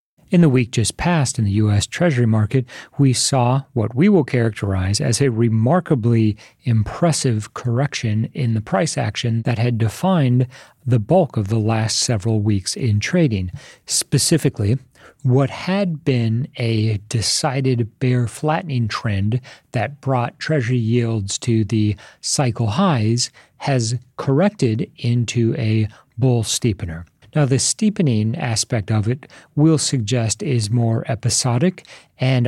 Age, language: 40-59, English